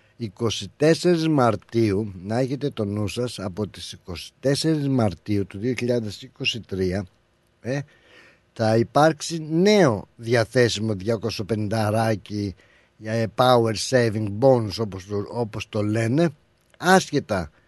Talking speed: 90 wpm